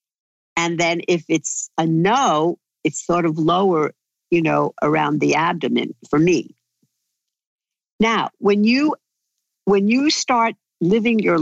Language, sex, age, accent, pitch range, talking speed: English, female, 50-69, American, 155-215 Hz, 130 wpm